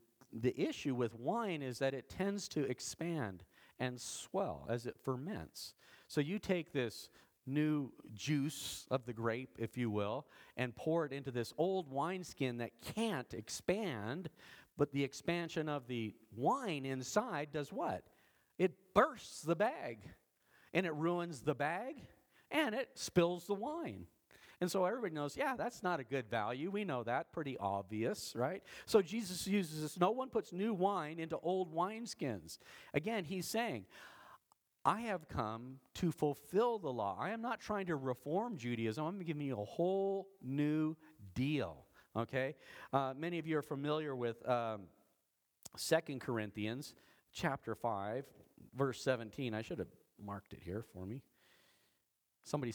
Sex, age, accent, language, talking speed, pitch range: male, 40-59, American, English, 155 wpm, 120-180 Hz